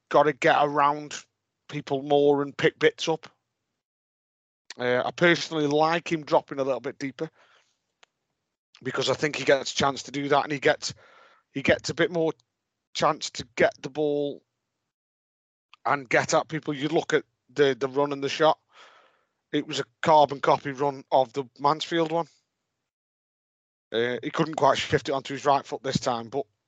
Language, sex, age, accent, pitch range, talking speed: English, male, 40-59, British, 135-155 Hz, 180 wpm